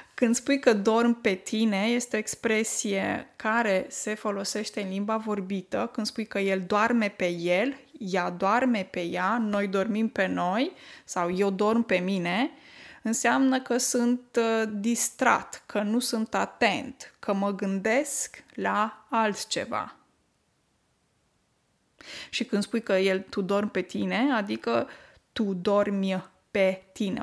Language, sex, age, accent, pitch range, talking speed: Romanian, female, 20-39, native, 195-240 Hz, 135 wpm